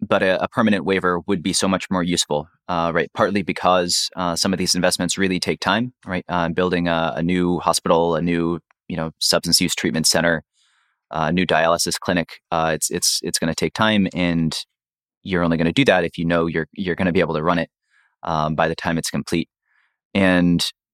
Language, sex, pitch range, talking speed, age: English, male, 85-100 Hz, 220 wpm, 30-49